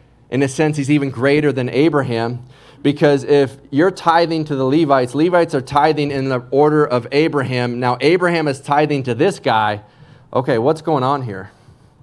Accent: American